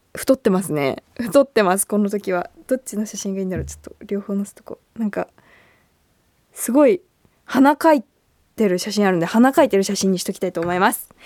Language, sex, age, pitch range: Japanese, female, 20-39, 195-325 Hz